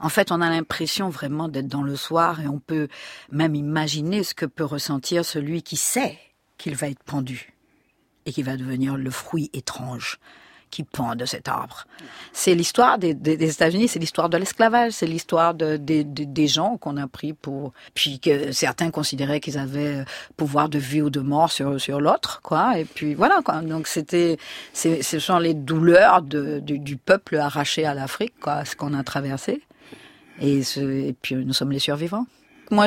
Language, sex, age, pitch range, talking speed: French, female, 50-69, 145-200 Hz, 195 wpm